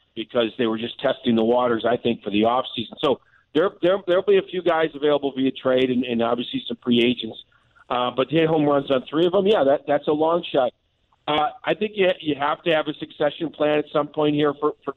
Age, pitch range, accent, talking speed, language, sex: 50-69, 130-160 Hz, American, 255 wpm, English, male